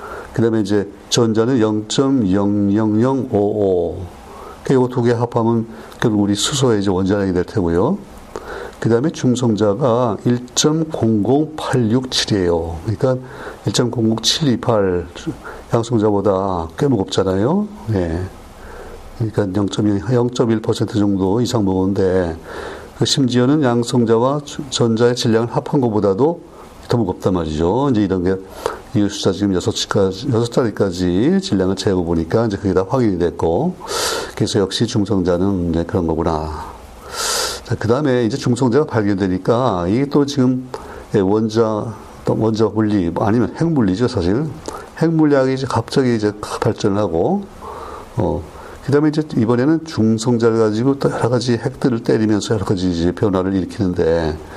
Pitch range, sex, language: 95-125 Hz, male, Korean